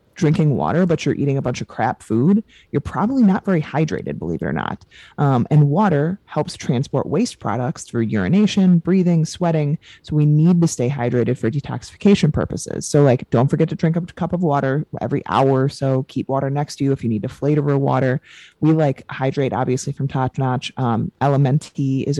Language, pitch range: English, 125-155 Hz